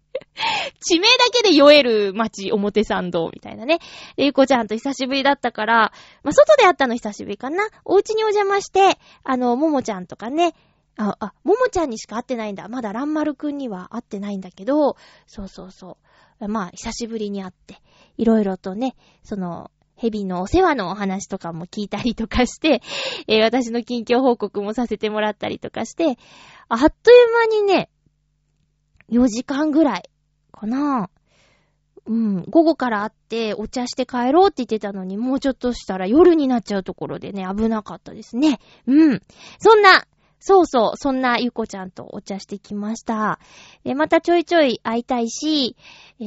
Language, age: Japanese, 20-39